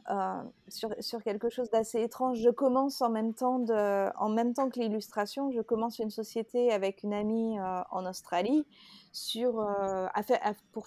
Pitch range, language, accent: 200-240 Hz, French, French